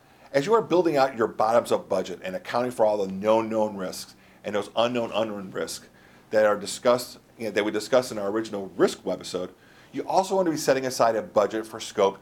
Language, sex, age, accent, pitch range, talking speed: English, male, 50-69, American, 105-145 Hz, 220 wpm